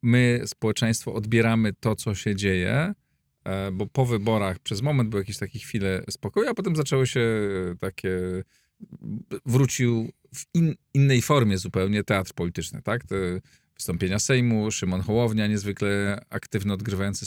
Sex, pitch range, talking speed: male, 95-115 Hz, 135 wpm